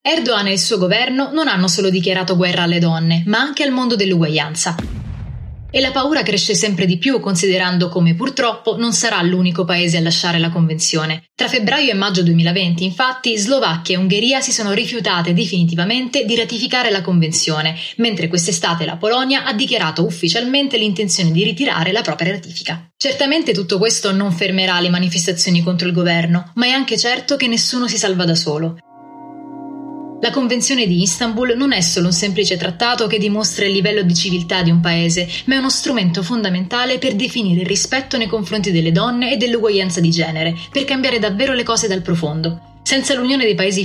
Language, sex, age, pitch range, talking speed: Italian, female, 20-39, 170-240 Hz, 180 wpm